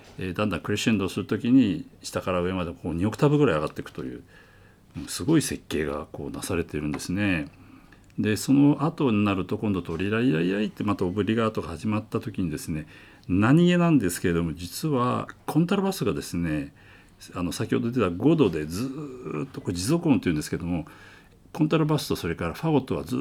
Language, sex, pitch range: Japanese, male, 85-135 Hz